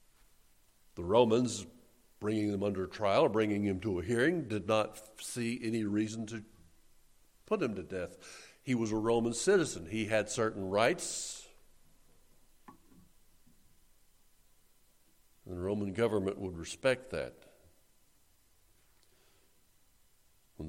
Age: 60-79